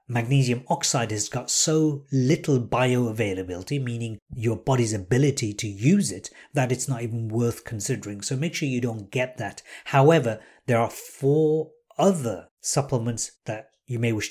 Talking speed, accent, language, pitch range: 155 wpm, British, English, 120-145 Hz